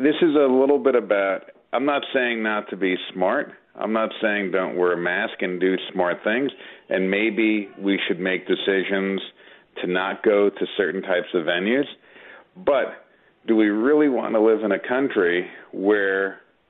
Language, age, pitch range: English, 40-59, 95-115 Hz